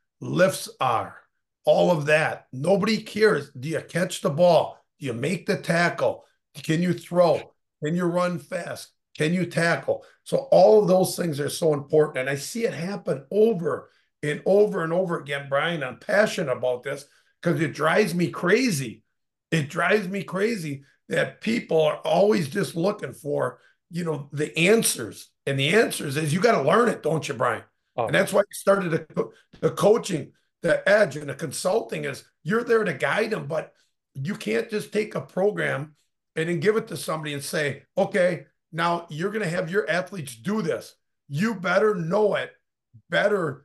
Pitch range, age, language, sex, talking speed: 150-195 Hz, 50-69, English, male, 180 wpm